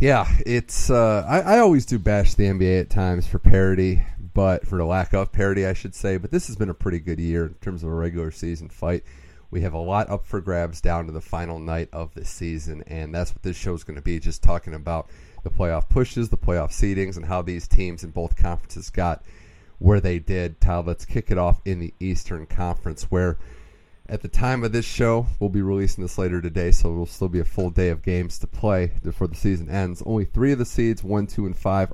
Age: 30-49